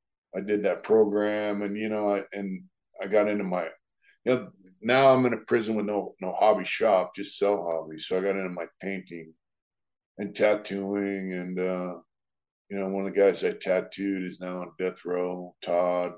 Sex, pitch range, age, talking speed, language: male, 90-105 Hz, 50-69, 195 wpm, English